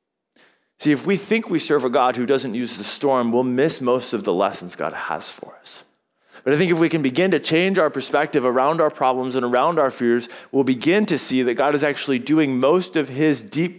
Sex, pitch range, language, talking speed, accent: male, 115-155 Hz, English, 235 wpm, American